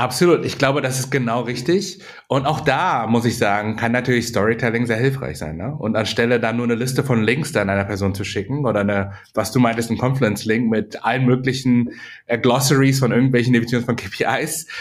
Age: 30-49